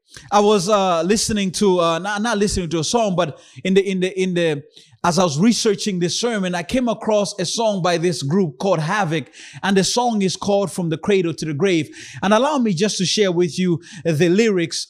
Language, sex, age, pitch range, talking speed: English, male, 30-49, 175-225 Hz, 225 wpm